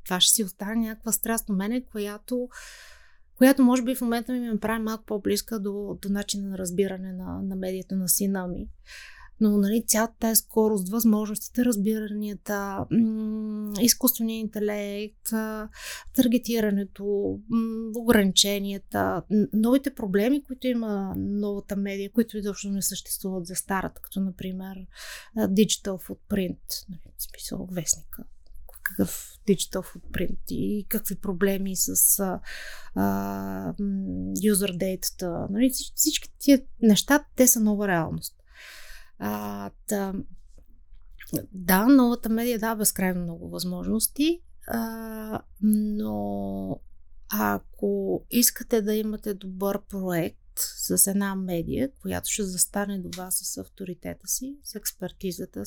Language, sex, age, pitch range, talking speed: Bulgarian, female, 30-49, 185-225 Hz, 110 wpm